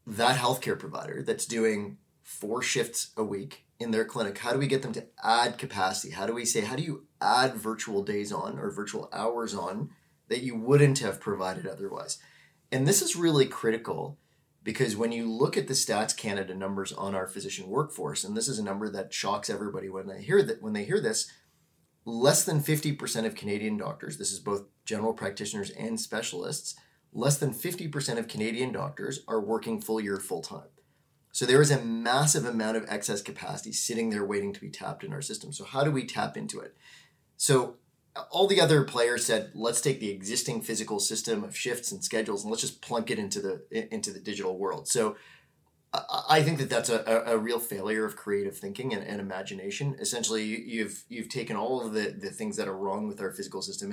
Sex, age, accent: male, 30-49, American